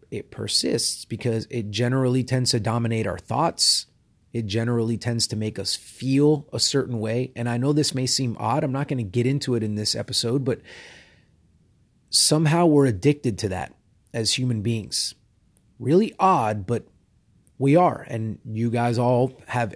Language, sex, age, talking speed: English, male, 30-49, 170 wpm